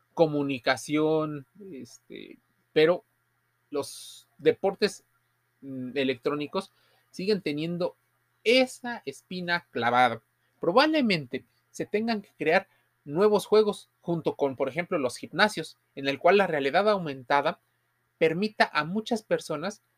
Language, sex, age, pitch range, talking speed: Spanish, male, 30-49, 135-185 Hz, 100 wpm